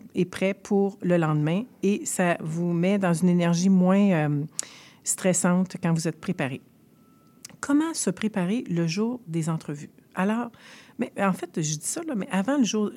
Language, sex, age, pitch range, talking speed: French, female, 50-69, 165-205 Hz, 175 wpm